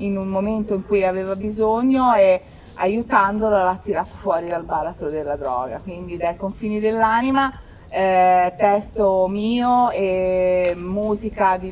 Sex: female